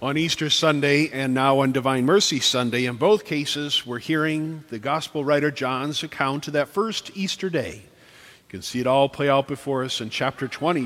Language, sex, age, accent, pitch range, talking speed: English, male, 50-69, American, 140-175 Hz, 200 wpm